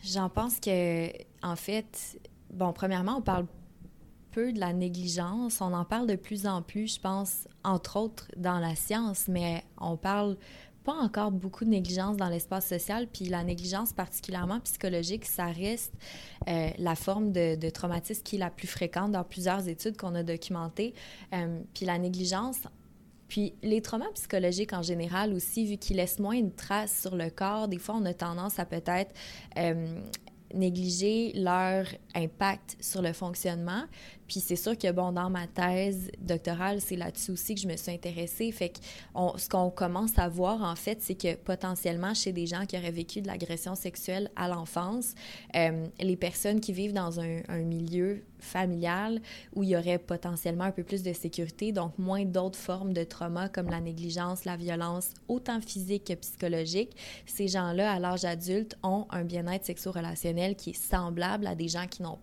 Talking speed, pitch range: 180 wpm, 175-200 Hz